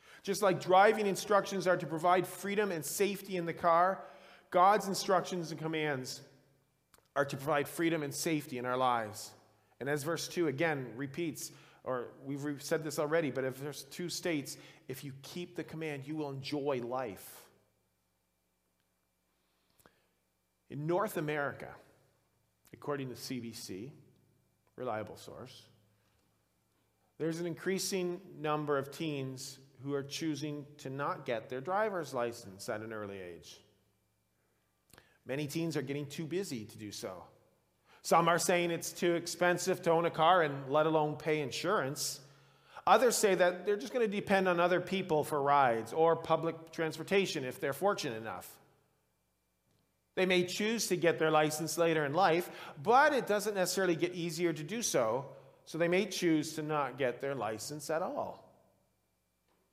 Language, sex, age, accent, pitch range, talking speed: English, male, 40-59, American, 130-175 Hz, 155 wpm